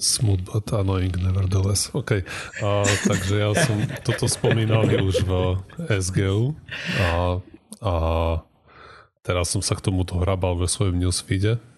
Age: 30-49